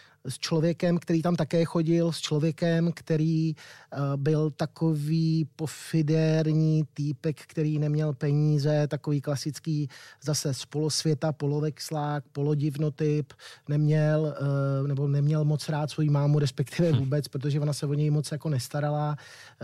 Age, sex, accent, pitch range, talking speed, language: 30-49, male, native, 140-155 Hz, 130 wpm, Czech